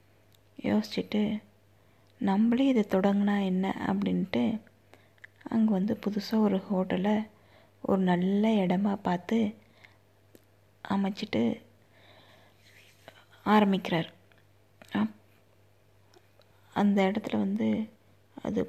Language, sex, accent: Tamil, female, native